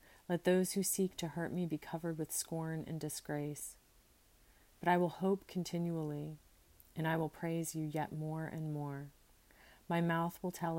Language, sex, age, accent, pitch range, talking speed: English, female, 40-59, American, 150-175 Hz, 170 wpm